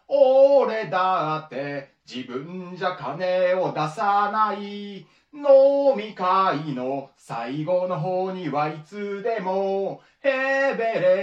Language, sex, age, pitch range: Japanese, male, 30-49, 180-270 Hz